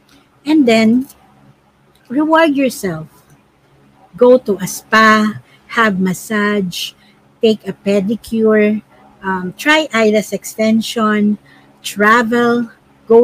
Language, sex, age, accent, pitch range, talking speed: Filipino, female, 50-69, native, 195-260 Hz, 85 wpm